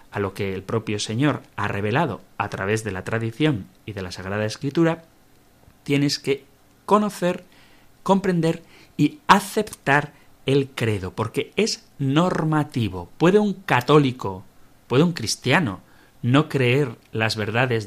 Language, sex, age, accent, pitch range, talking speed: Spanish, male, 30-49, Spanish, 105-150 Hz, 130 wpm